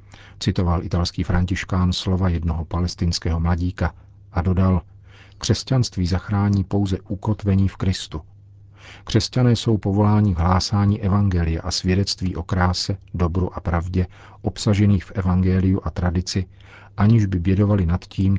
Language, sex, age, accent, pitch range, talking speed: Czech, male, 40-59, native, 90-100 Hz, 125 wpm